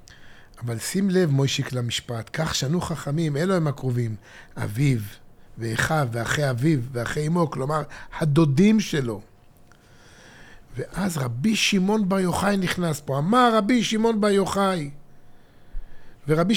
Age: 50-69